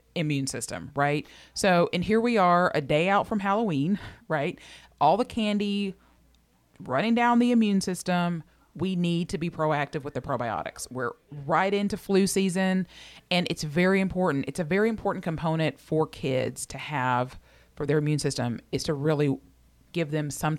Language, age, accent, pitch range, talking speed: English, 30-49, American, 145-180 Hz, 170 wpm